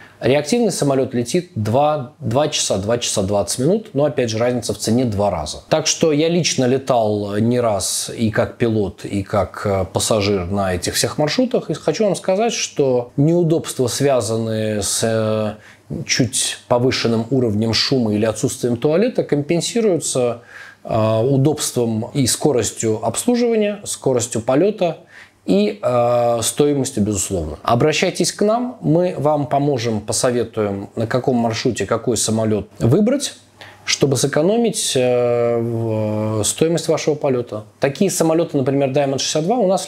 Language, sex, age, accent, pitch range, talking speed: Russian, male, 20-39, native, 110-155 Hz, 130 wpm